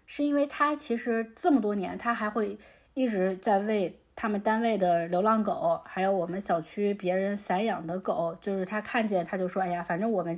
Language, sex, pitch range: Chinese, female, 185-240 Hz